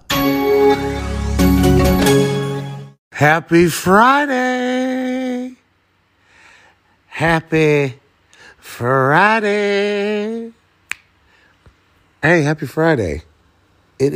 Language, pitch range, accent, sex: English, 130-175 Hz, American, male